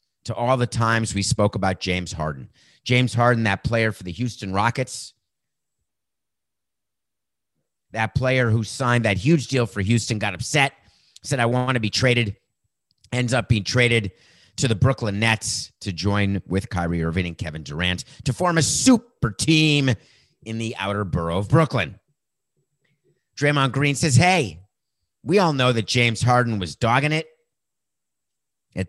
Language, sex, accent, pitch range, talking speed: English, male, American, 95-135 Hz, 155 wpm